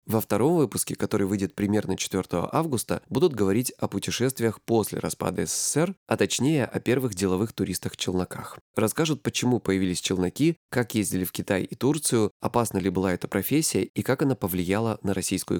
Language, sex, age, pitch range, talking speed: Russian, male, 20-39, 95-130 Hz, 160 wpm